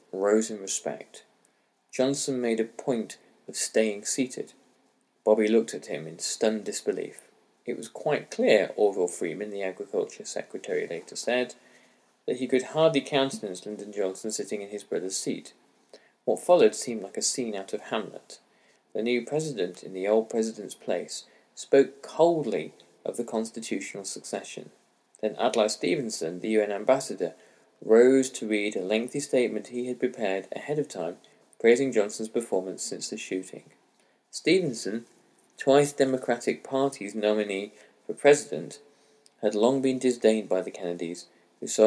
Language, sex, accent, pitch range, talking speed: English, male, British, 105-140 Hz, 150 wpm